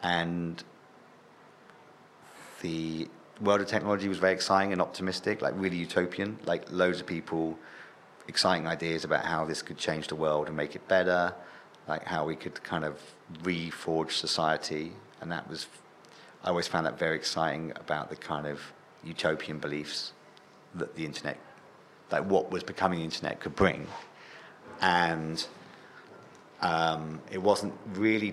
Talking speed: 145 wpm